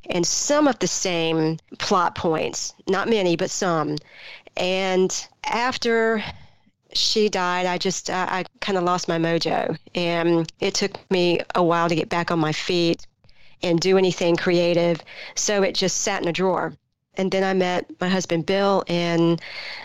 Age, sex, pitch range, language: 40-59, female, 170-190 Hz, English